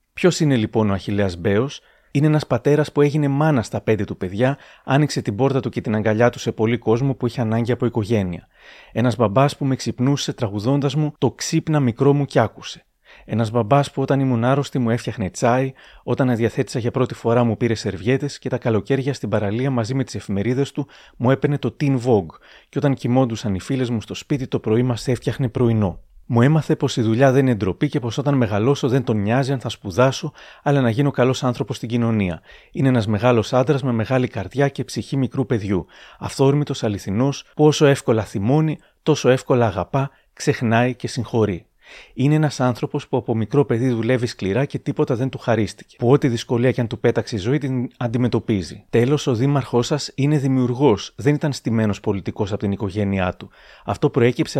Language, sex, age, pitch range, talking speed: Greek, male, 30-49, 115-140 Hz, 195 wpm